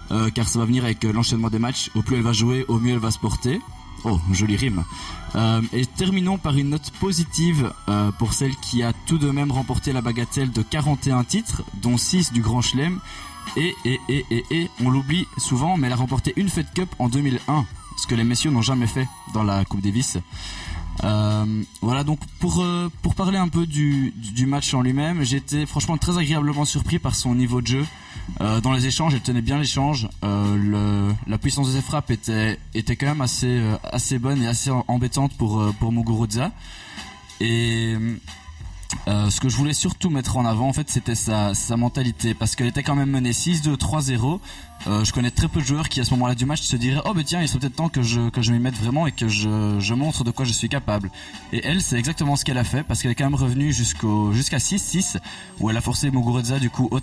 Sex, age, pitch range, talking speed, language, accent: male, 20-39, 110-140 Hz, 230 wpm, French, French